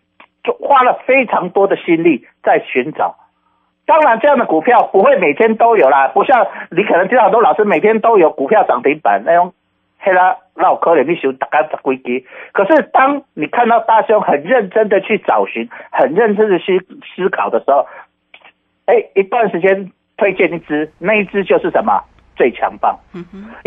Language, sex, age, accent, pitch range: Chinese, male, 50-69, native, 185-270 Hz